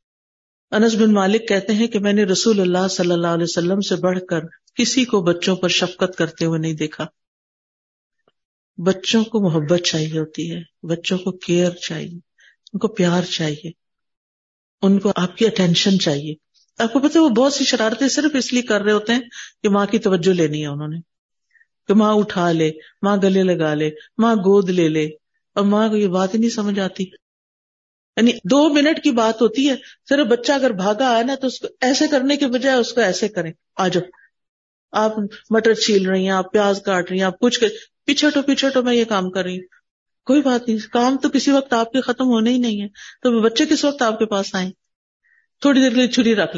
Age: 50-69